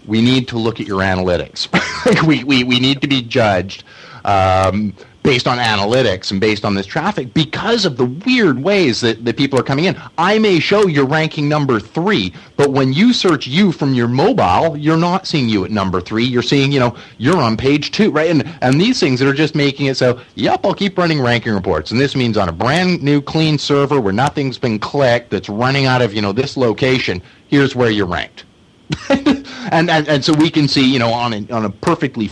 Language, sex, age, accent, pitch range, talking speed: English, male, 40-59, American, 105-150 Hz, 225 wpm